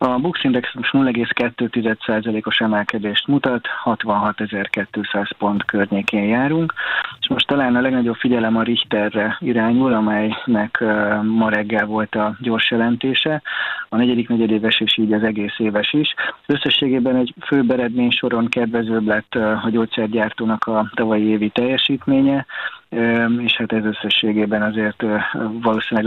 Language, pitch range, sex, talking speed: Hungarian, 105-120 Hz, male, 120 wpm